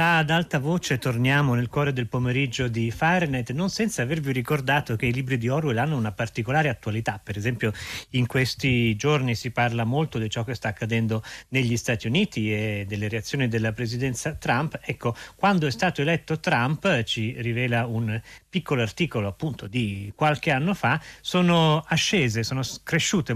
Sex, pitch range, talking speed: male, 115-145 Hz, 165 wpm